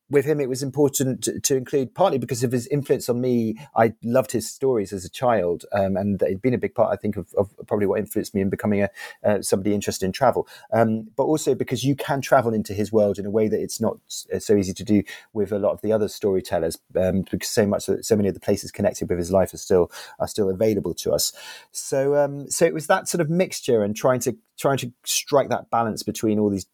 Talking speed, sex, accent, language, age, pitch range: 250 wpm, male, British, English, 30-49, 110-145 Hz